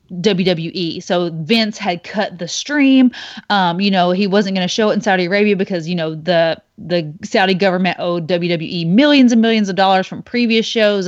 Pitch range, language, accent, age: 180-225 Hz, English, American, 30-49